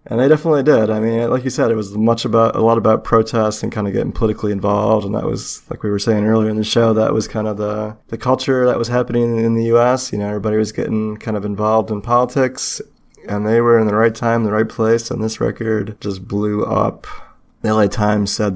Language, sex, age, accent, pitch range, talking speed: English, male, 20-39, American, 105-115 Hz, 250 wpm